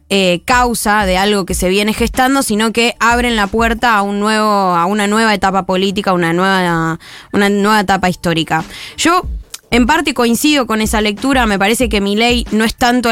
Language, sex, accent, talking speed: Spanish, female, Argentinian, 190 wpm